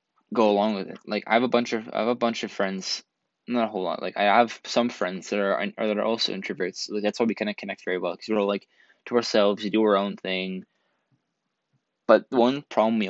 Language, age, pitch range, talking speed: English, 20-39, 100-120 Hz, 255 wpm